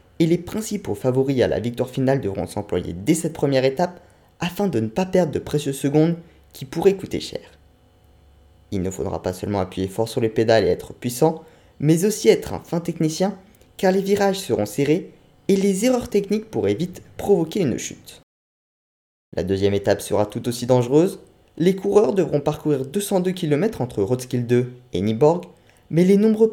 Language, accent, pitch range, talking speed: French, French, 115-185 Hz, 180 wpm